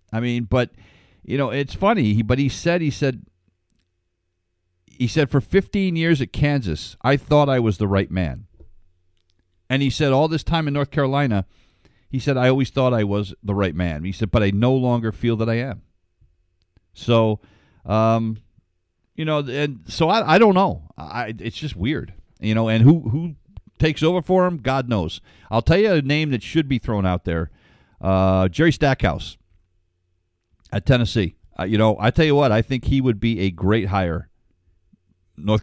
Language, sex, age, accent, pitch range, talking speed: English, male, 50-69, American, 90-125 Hz, 190 wpm